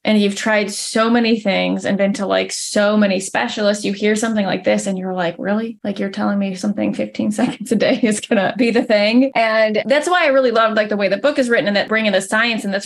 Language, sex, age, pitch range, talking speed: English, female, 20-39, 195-240 Hz, 265 wpm